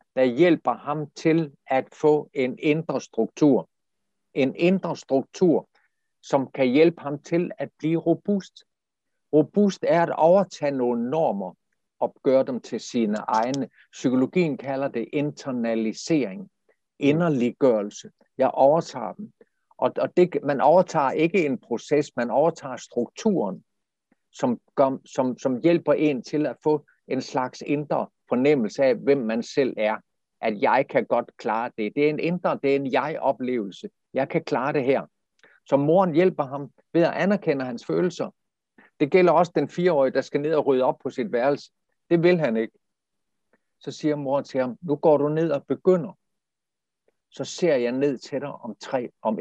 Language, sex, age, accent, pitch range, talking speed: Danish, male, 60-79, native, 130-170 Hz, 165 wpm